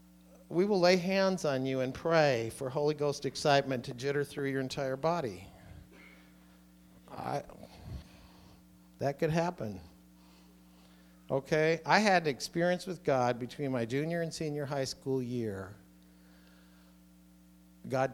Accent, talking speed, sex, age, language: American, 120 wpm, male, 50-69, English